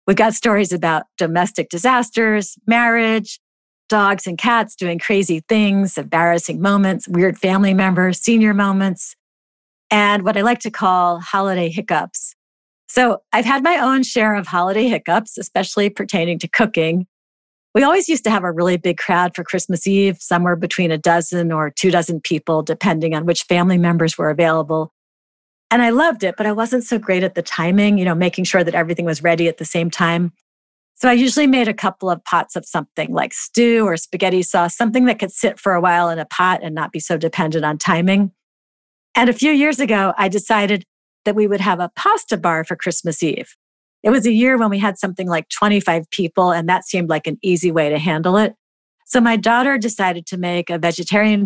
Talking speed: 200 wpm